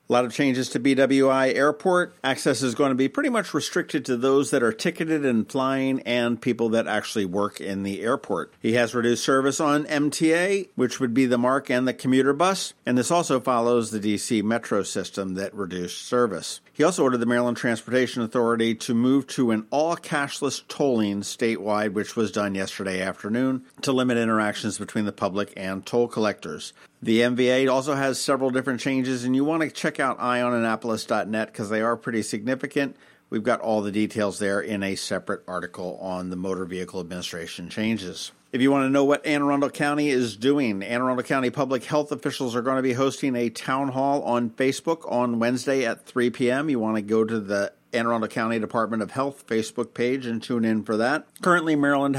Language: English